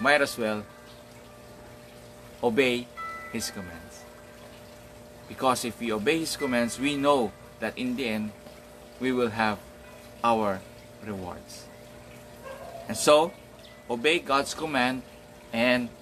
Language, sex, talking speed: English, male, 110 wpm